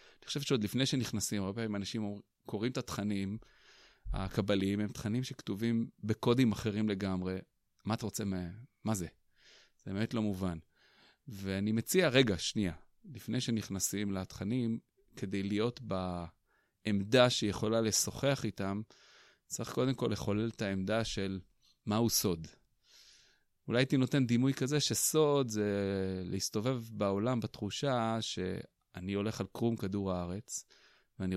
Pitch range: 100-120 Hz